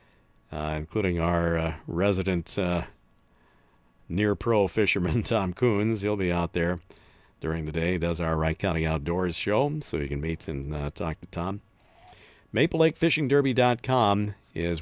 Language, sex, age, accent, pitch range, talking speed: English, male, 50-69, American, 85-110 Hz, 140 wpm